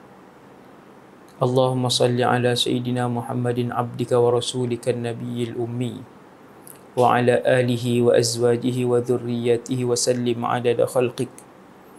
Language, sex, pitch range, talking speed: English, male, 120-130 Hz, 80 wpm